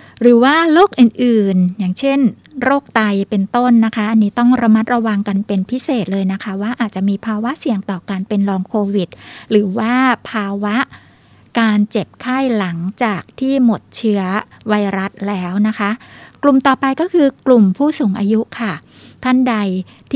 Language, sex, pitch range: Thai, female, 200-240 Hz